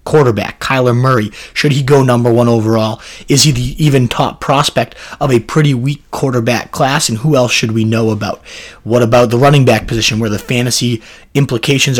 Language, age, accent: English, 30-49, American